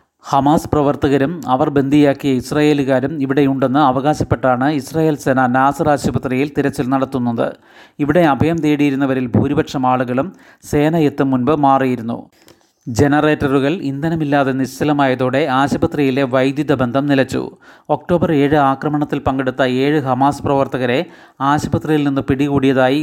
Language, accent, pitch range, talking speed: Malayalam, native, 135-150 Hz, 100 wpm